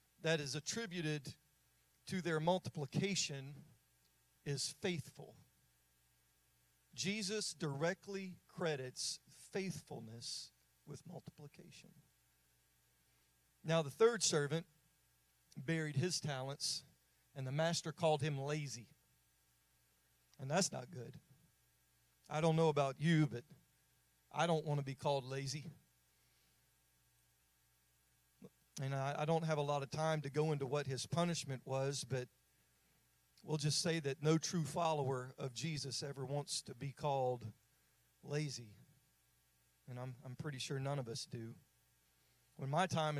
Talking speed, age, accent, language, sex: 120 wpm, 40-59, American, English, male